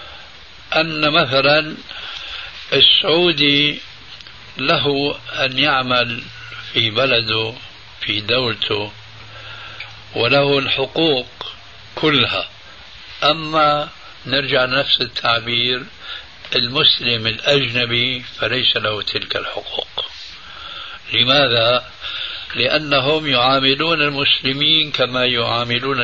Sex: male